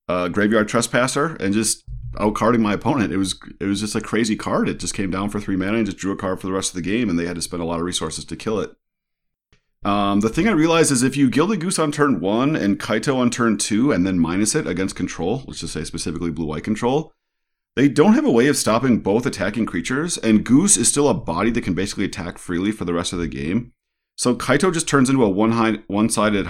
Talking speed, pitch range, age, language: 250 wpm, 85-115 Hz, 30-49, English